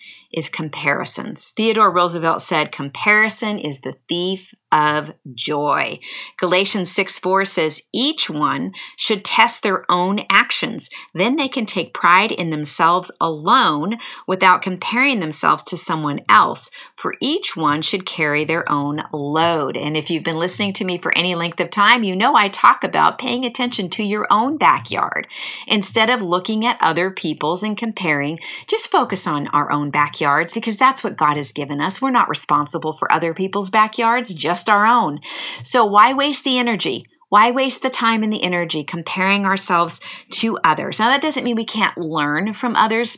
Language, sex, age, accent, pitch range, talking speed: English, female, 50-69, American, 160-225 Hz, 170 wpm